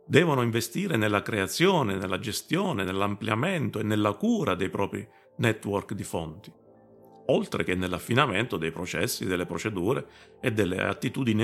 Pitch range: 95-120 Hz